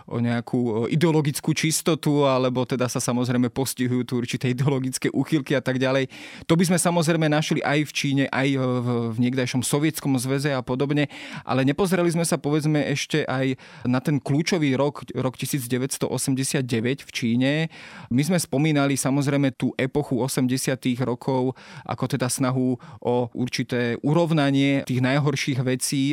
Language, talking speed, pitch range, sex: Slovak, 145 wpm, 125-145 Hz, male